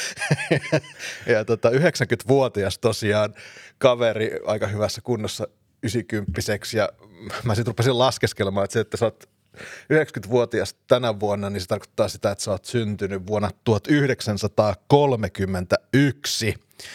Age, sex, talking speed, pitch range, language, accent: 30-49, male, 120 wpm, 100-120 Hz, Finnish, native